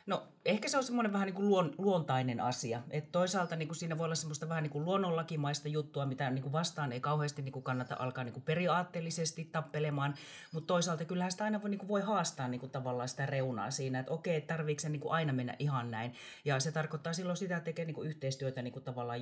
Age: 30-49